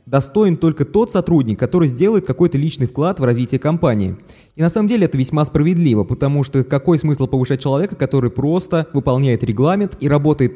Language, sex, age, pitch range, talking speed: Russian, male, 20-39, 130-165 Hz, 175 wpm